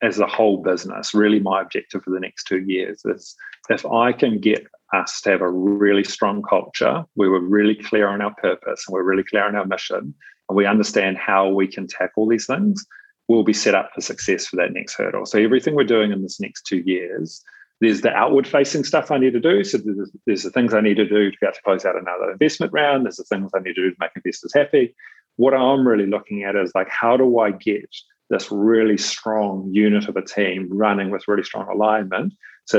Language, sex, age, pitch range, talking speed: English, male, 40-59, 100-110 Hz, 235 wpm